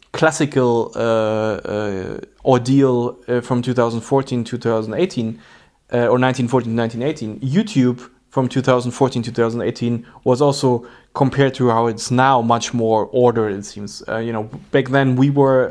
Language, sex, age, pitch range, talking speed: English, male, 20-39, 120-140 Hz, 145 wpm